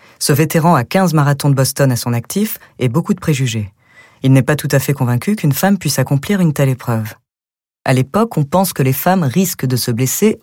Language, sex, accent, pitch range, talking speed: French, female, French, 125-180 Hz, 225 wpm